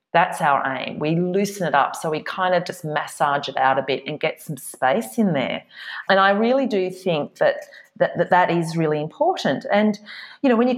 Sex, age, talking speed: female, 30-49, 225 wpm